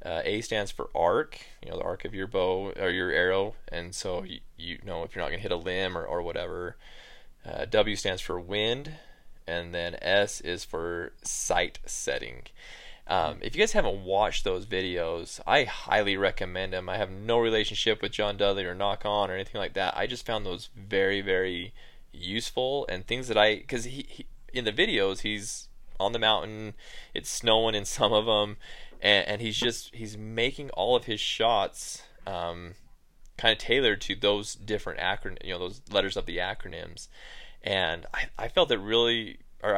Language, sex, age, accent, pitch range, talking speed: English, male, 20-39, American, 95-110 Hz, 190 wpm